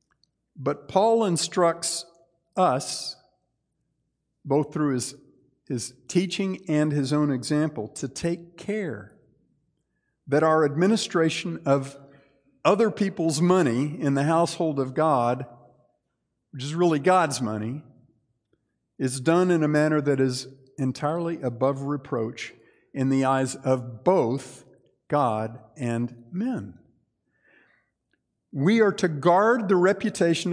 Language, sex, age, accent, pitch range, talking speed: English, male, 50-69, American, 135-185 Hz, 110 wpm